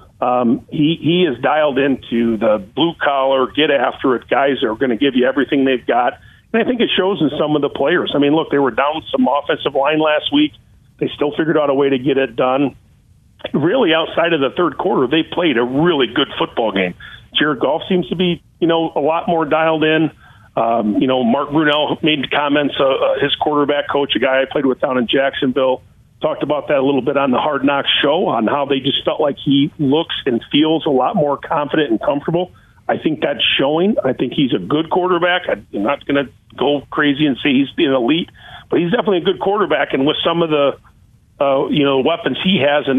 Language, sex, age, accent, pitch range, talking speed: English, male, 50-69, American, 130-160 Hz, 225 wpm